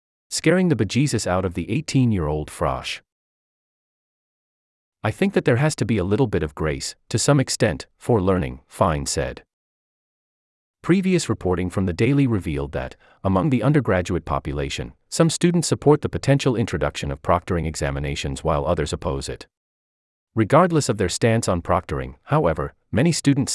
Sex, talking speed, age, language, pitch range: male, 155 wpm, 30-49, English, 80-130 Hz